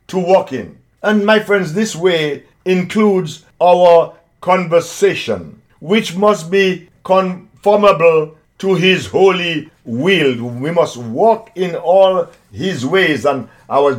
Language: English